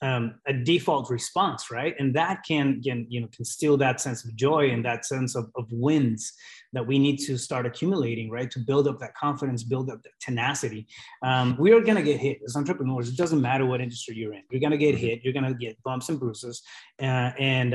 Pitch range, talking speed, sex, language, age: 120-145 Hz, 235 wpm, male, English, 20-39